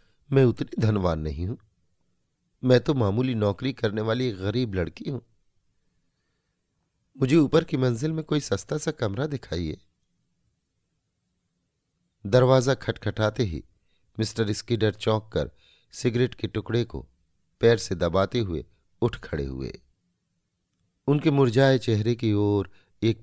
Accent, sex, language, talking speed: native, male, Hindi, 125 wpm